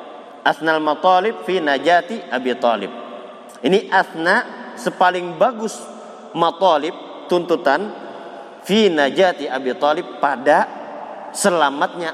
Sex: male